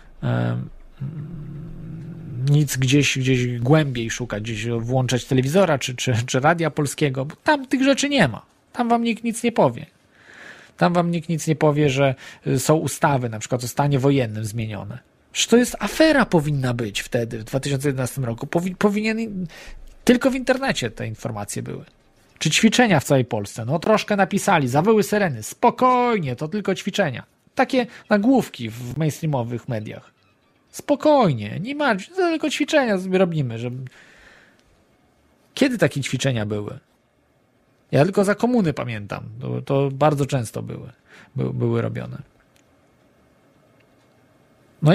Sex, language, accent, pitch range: male, Polish, native, 125-195 Hz